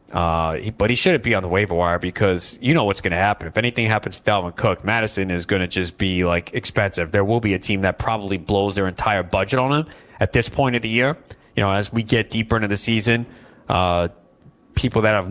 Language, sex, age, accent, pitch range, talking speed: English, male, 30-49, American, 95-120 Hz, 235 wpm